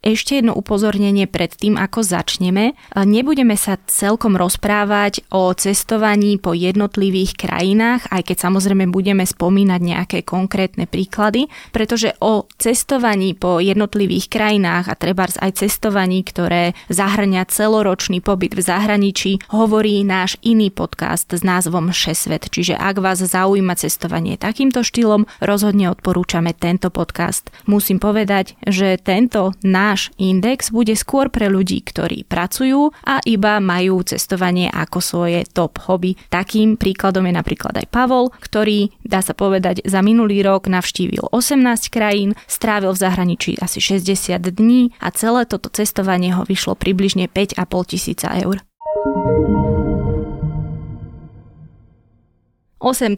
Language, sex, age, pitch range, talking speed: Slovak, female, 20-39, 185-215 Hz, 125 wpm